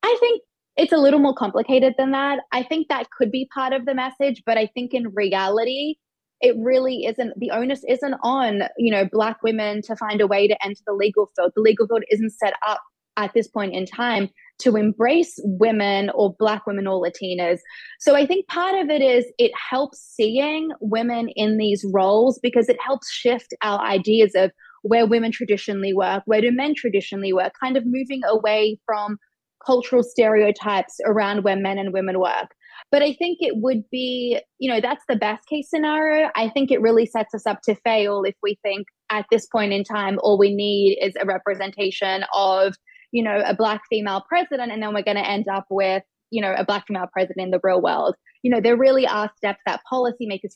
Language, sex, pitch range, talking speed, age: English, female, 200-255 Hz, 205 wpm, 20-39